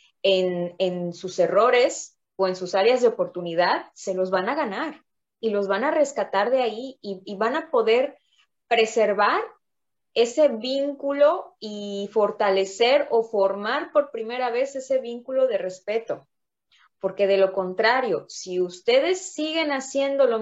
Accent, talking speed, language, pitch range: Mexican, 145 wpm, Spanish, 190-255 Hz